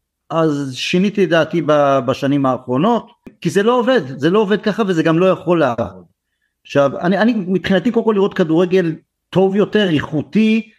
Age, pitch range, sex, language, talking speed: 50-69, 155-215 Hz, male, Hebrew, 160 wpm